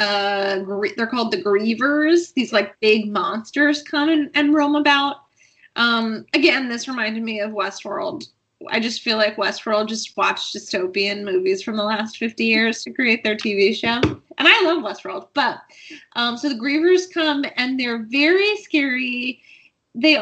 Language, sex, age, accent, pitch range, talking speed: English, female, 20-39, American, 220-305 Hz, 165 wpm